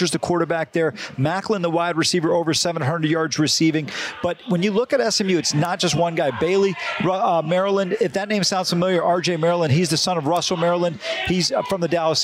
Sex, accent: male, American